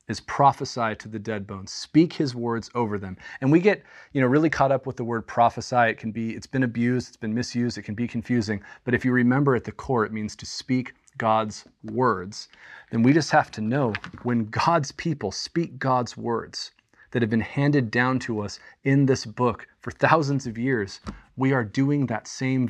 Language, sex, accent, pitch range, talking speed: English, male, American, 110-130 Hz, 210 wpm